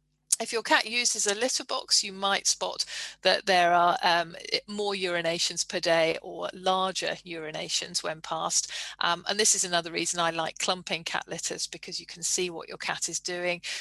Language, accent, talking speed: English, British, 185 wpm